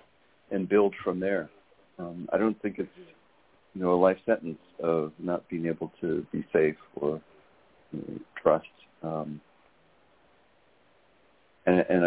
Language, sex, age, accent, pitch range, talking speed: English, male, 60-79, American, 85-100 Hz, 140 wpm